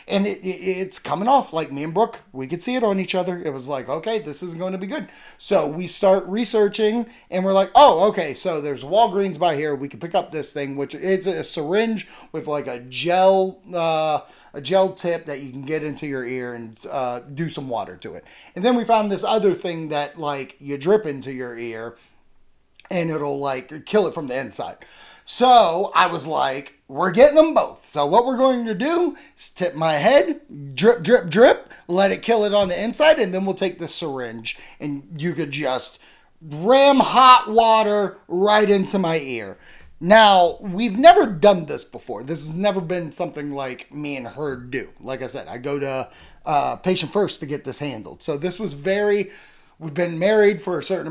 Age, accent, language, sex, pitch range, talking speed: 30-49, American, English, male, 145-210 Hz, 210 wpm